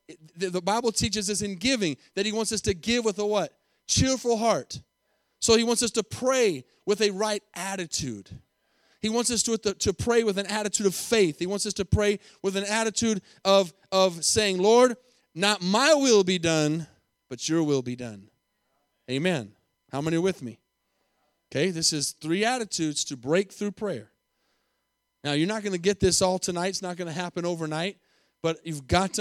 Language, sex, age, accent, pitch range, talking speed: English, male, 30-49, American, 150-200 Hz, 195 wpm